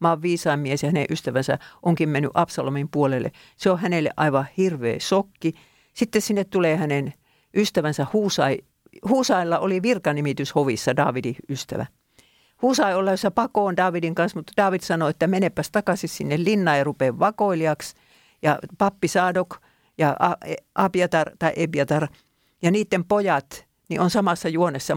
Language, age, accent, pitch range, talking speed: Finnish, 50-69, native, 140-185 Hz, 140 wpm